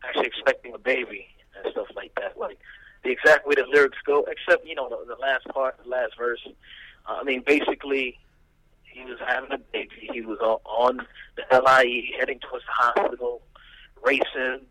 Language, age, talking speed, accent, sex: English, 30-49, 185 wpm, American, male